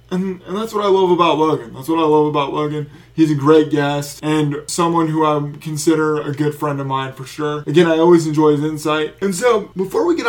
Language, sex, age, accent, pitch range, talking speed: English, male, 20-39, American, 155-190 Hz, 240 wpm